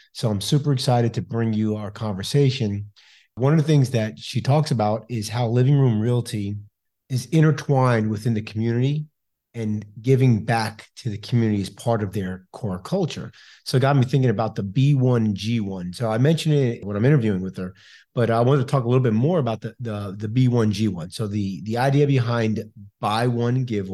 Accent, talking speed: American, 195 wpm